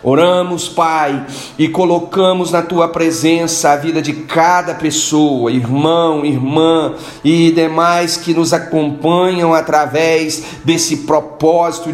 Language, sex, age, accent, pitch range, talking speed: Portuguese, male, 40-59, Brazilian, 155-190 Hz, 110 wpm